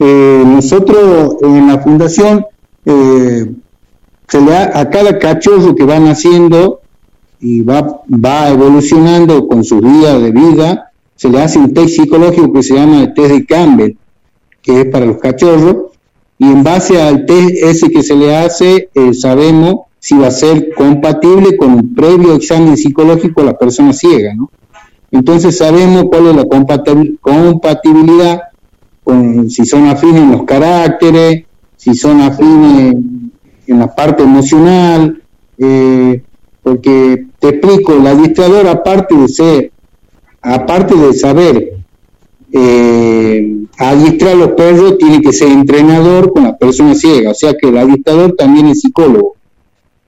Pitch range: 135-180 Hz